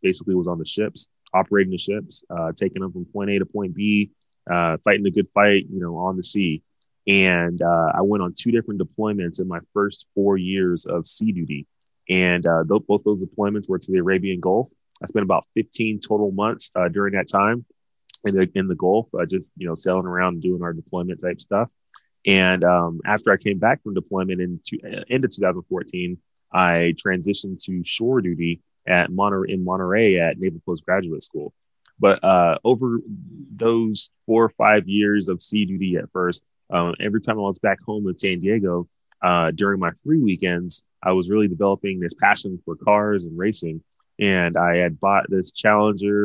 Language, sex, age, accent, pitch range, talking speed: English, male, 20-39, American, 90-105 Hz, 195 wpm